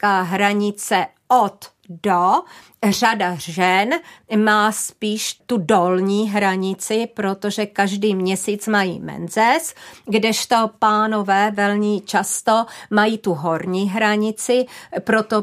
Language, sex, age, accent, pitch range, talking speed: Czech, female, 40-59, native, 195-215 Hz, 95 wpm